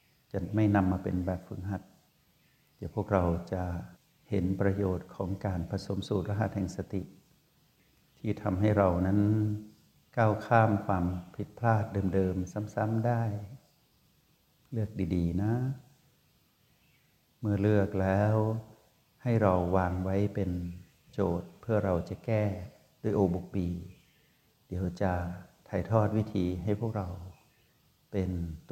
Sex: male